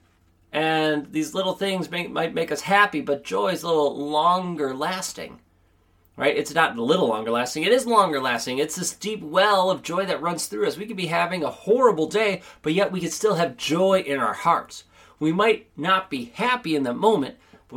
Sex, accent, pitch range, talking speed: male, American, 130-190 Hz, 215 wpm